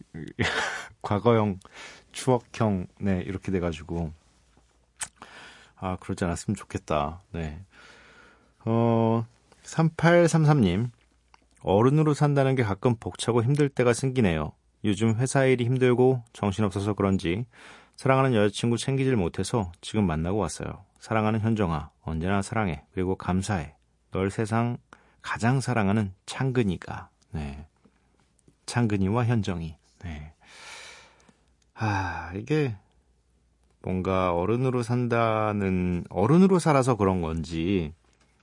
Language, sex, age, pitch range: Korean, male, 40-59, 90-125 Hz